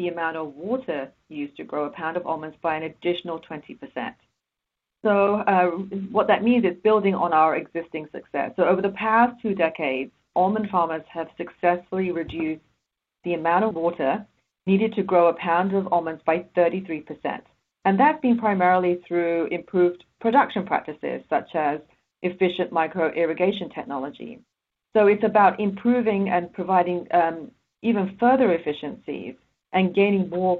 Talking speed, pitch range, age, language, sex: 150 wpm, 165-210 Hz, 30-49, English, female